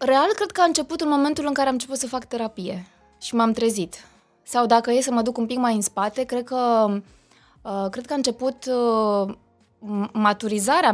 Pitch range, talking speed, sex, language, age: 205-260 Hz, 185 wpm, female, Romanian, 20-39